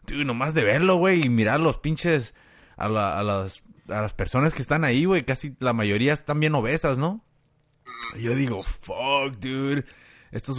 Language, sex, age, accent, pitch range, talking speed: Spanish, male, 30-49, Mexican, 110-150 Hz, 165 wpm